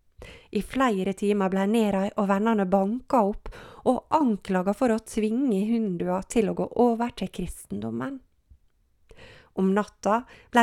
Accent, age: Swedish, 30-49